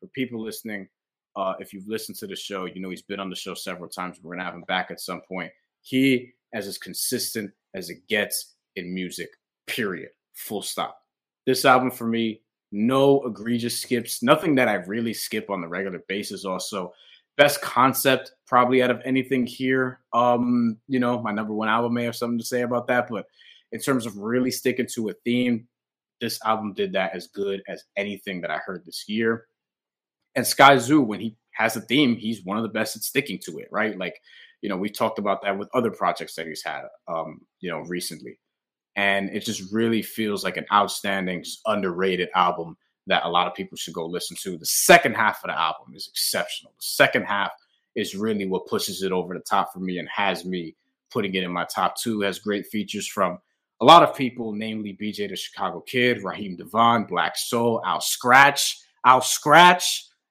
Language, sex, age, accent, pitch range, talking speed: English, male, 30-49, American, 95-125 Hz, 205 wpm